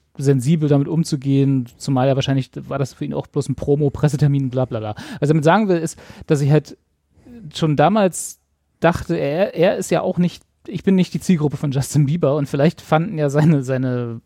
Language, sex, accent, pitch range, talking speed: German, male, German, 130-165 Hz, 205 wpm